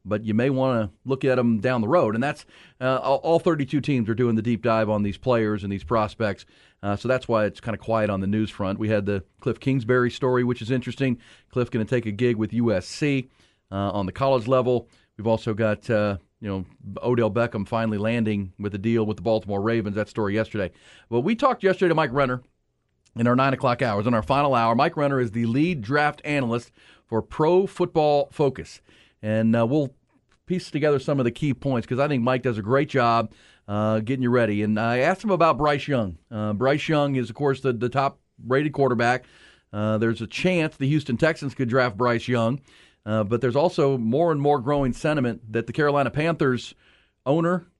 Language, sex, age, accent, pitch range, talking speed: English, male, 40-59, American, 110-140 Hz, 215 wpm